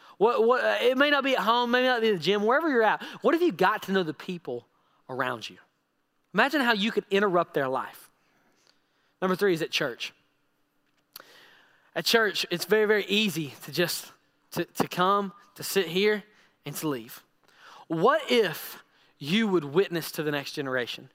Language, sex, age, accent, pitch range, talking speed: English, male, 20-39, American, 165-245 Hz, 185 wpm